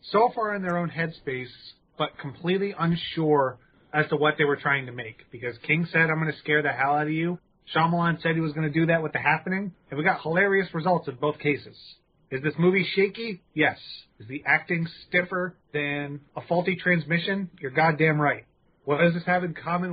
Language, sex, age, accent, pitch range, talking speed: English, male, 30-49, American, 150-180 Hz, 210 wpm